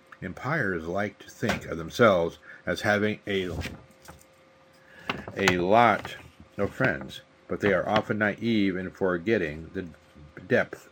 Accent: American